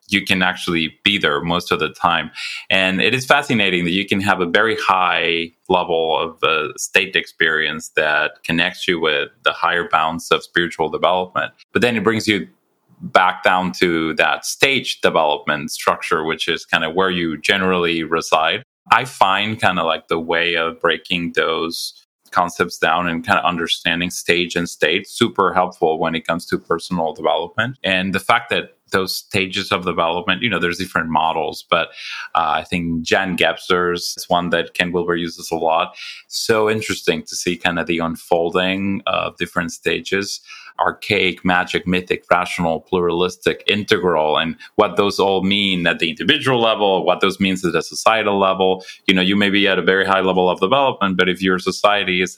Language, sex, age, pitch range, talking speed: English, male, 30-49, 85-100 Hz, 180 wpm